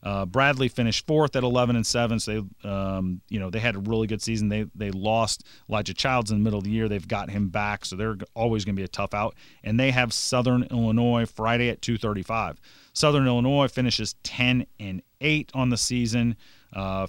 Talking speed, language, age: 215 wpm, English, 40-59